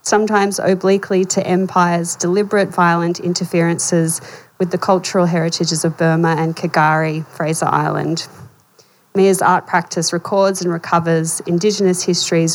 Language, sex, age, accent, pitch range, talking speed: English, female, 20-39, Australian, 165-190 Hz, 120 wpm